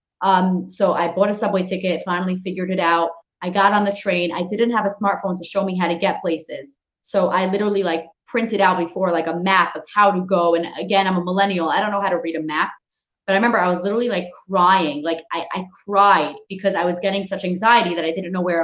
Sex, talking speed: female, 250 wpm